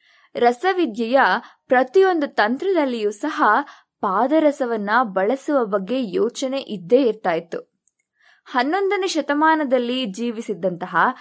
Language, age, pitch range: Kannada, 20-39, 225-315 Hz